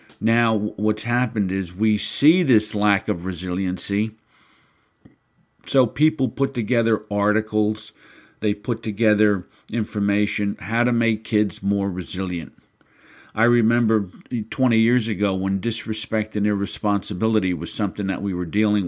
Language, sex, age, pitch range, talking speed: English, male, 50-69, 100-115 Hz, 125 wpm